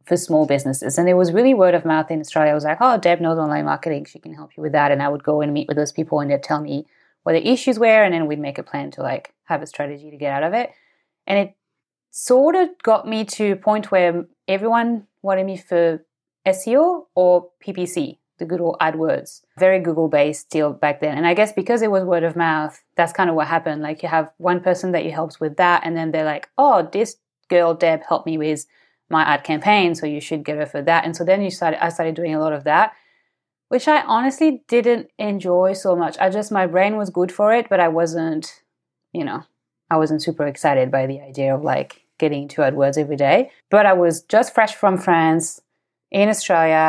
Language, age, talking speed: English, 30-49, 235 wpm